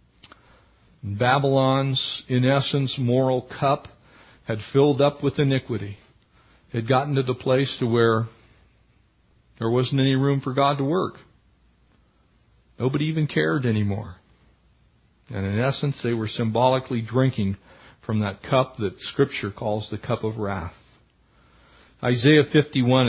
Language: English